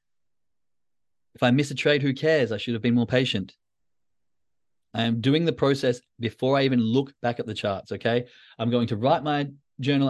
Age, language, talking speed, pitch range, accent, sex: 30-49, English, 195 wpm, 120-155 Hz, Australian, male